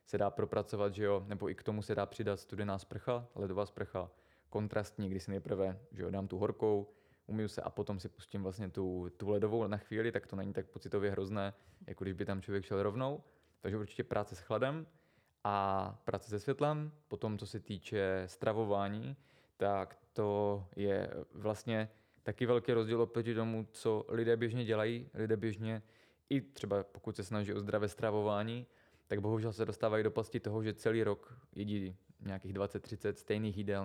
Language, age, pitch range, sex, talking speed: Czech, 20-39, 100-115 Hz, male, 180 wpm